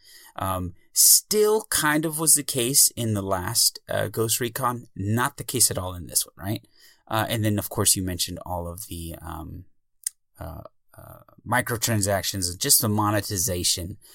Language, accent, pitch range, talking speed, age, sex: English, American, 95-125 Hz, 165 wpm, 30-49, male